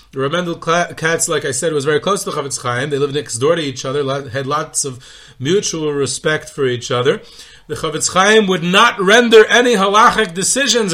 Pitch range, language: 130-170 Hz, English